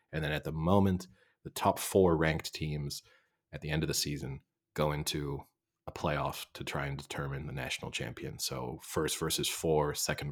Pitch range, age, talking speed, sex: 75-90 Hz, 30-49, 185 wpm, male